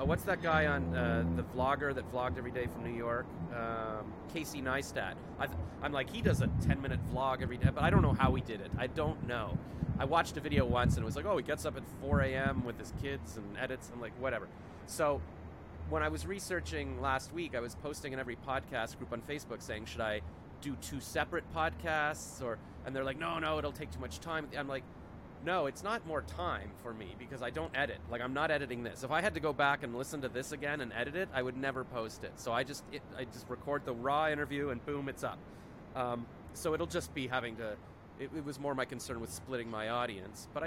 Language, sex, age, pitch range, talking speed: English, male, 30-49, 115-145 Hz, 245 wpm